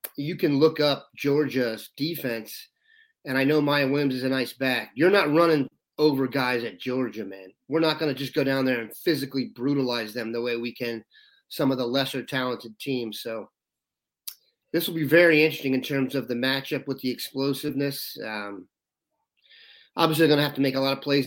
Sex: male